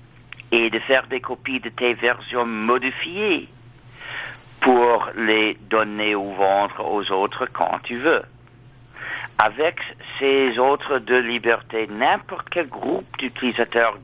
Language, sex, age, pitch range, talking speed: French, male, 60-79, 120-135 Hz, 120 wpm